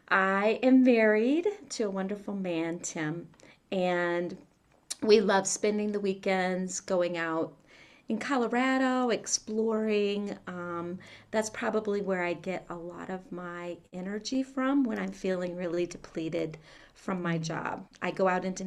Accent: American